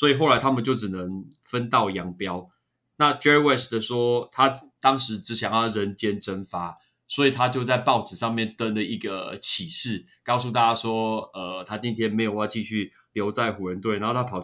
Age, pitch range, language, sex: 20-39, 105-135 Hz, Chinese, male